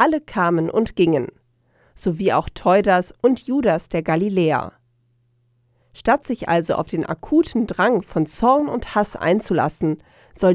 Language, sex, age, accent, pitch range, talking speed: German, female, 40-59, German, 160-230 Hz, 135 wpm